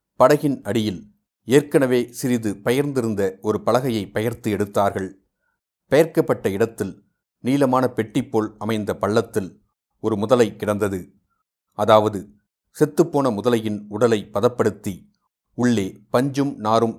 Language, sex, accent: Tamil, male, native